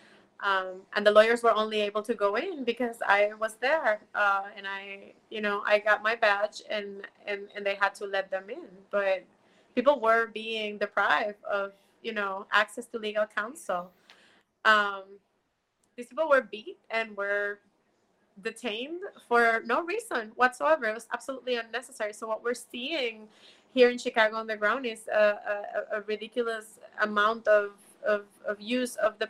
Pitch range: 210-235 Hz